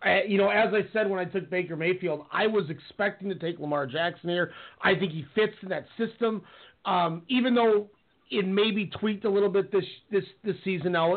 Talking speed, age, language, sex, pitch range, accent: 220 wpm, 30-49, English, male, 180-230 Hz, American